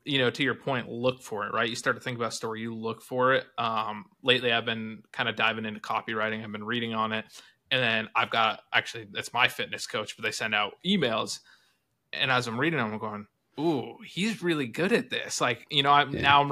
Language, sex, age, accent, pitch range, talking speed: English, male, 20-39, American, 115-135 Hz, 245 wpm